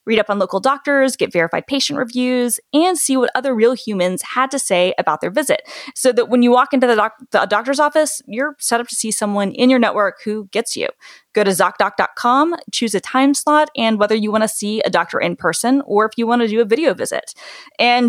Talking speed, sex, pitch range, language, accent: 230 wpm, female, 180-245 Hz, English, American